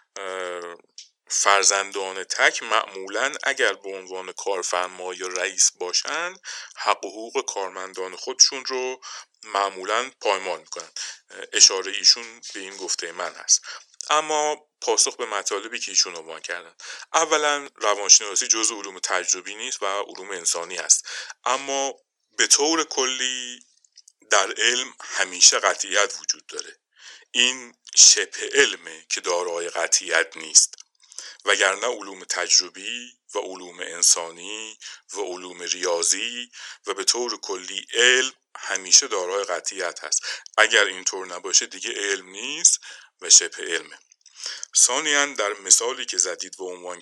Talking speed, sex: 125 wpm, male